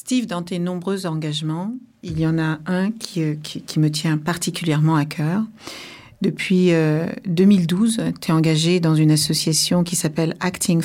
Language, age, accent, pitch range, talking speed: French, 50-69, French, 160-185 Hz, 165 wpm